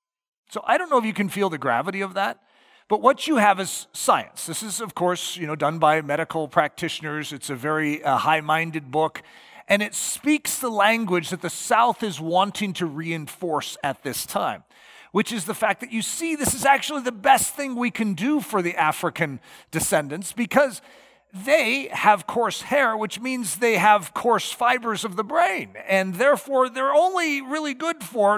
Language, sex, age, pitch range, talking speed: English, male, 40-59, 170-250 Hz, 190 wpm